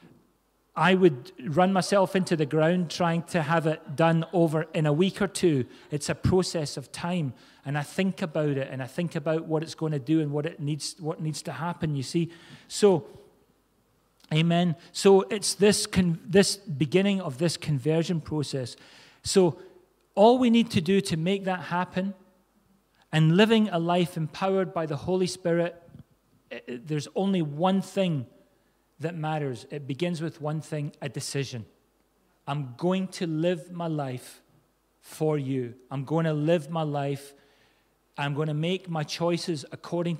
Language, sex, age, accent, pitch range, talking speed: English, male, 40-59, British, 150-180 Hz, 170 wpm